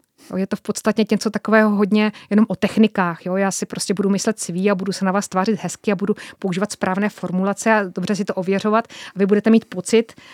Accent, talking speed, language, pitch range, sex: native, 225 wpm, Czech, 190-220 Hz, female